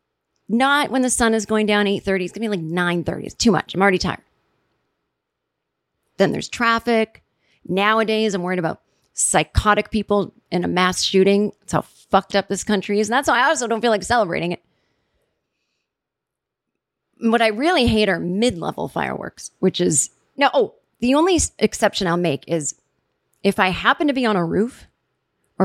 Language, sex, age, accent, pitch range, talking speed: English, female, 30-49, American, 195-235 Hz, 180 wpm